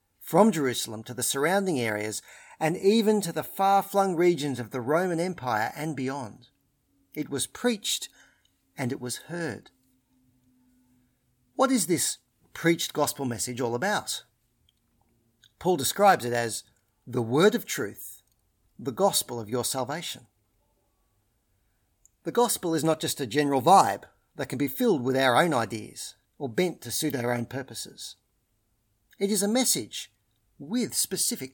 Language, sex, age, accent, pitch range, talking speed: English, male, 50-69, Australian, 115-165 Hz, 145 wpm